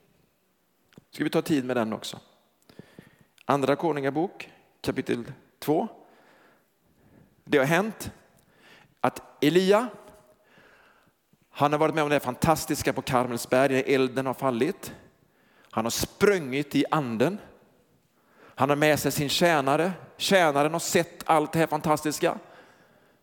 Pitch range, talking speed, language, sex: 145-205 Hz, 125 wpm, Swedish, male